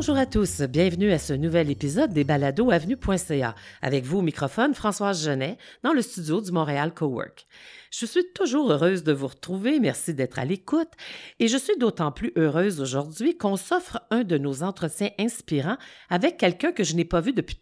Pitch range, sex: 145-210 Hz, female